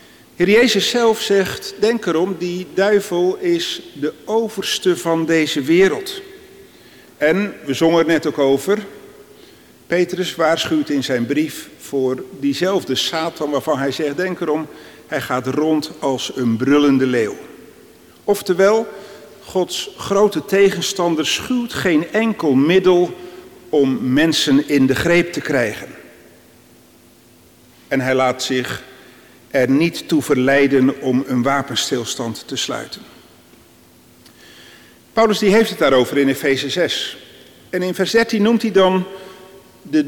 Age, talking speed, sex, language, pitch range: 50-69, 125 wpm, male, Dutch, 145-210 Hz